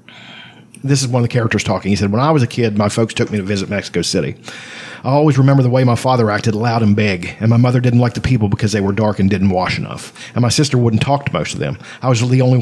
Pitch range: 110-140 Hz